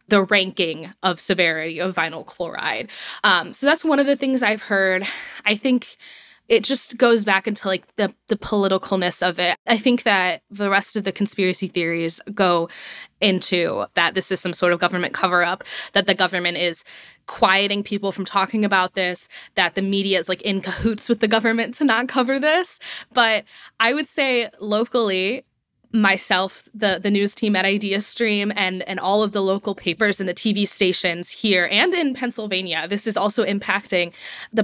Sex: female